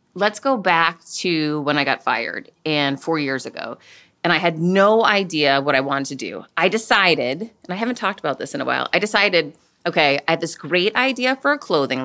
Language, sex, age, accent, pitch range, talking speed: English, female, 30-49, American, 150-205 Hz, 220 wpm